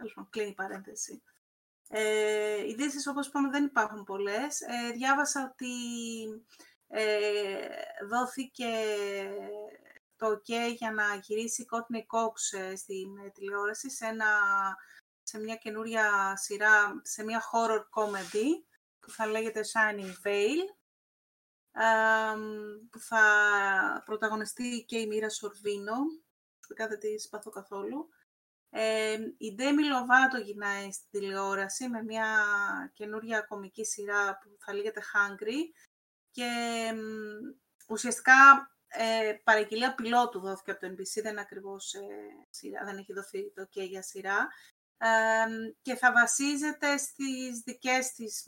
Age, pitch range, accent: 30-49, 205-240 Hz, native